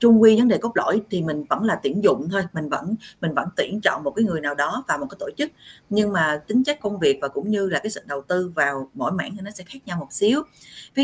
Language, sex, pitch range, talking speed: Vietnamese, female, 150-215 Hz, 295 wpm